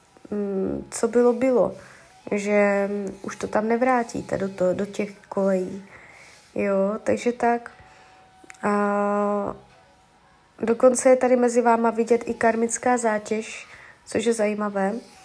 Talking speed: 115 wpm